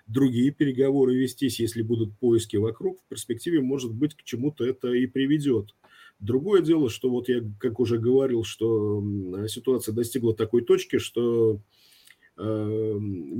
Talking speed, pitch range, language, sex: 140 wpm, 105-130 Hz, Russian, male